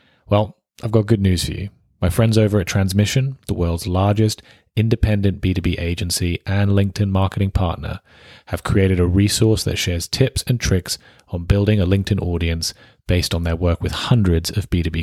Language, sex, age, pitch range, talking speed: English, male, 30-49, 90-115 Hz, 175 wpm